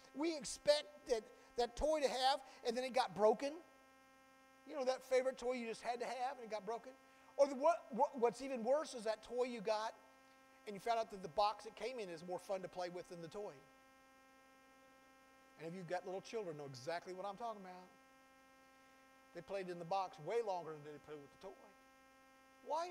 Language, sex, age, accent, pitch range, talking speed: English, male, 40-59, American, 185-265 Hz, 215 wpm